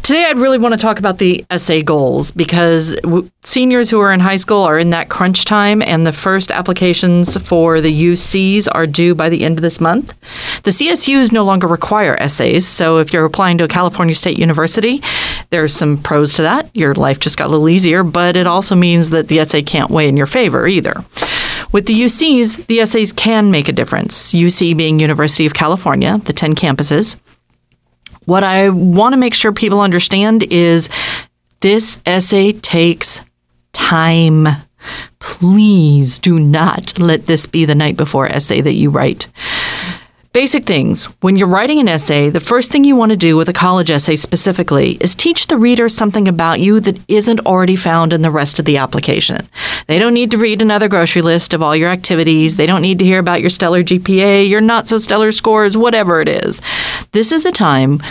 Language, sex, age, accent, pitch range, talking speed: English, female, 40-59, American, 160-210 Hz, 195 wpm